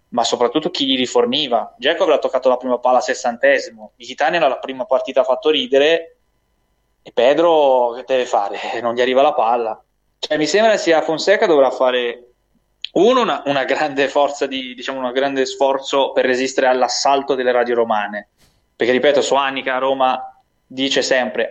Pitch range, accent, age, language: 125-155 Hz, native, 20-39, Italian